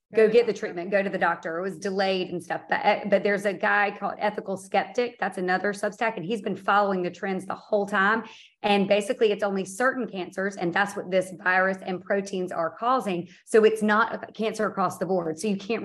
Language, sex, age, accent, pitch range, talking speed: English, female, 30-49, American, 185-225 Hz, 220 wpm